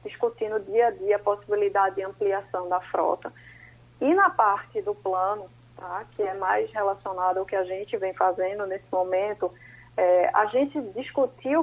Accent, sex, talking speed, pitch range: Brazilian, female, 165 wpm, 195-260 Hz